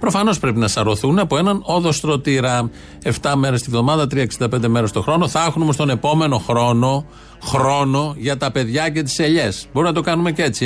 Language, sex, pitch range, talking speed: Greek, male, 115-155 Hz, 195 wpm